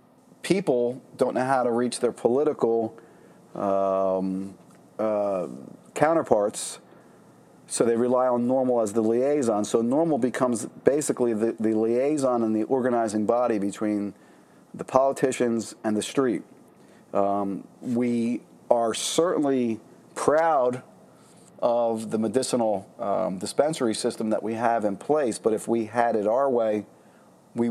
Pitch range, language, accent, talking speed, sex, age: 110-125 Hz, English, American, 130 wpm, male, 40-59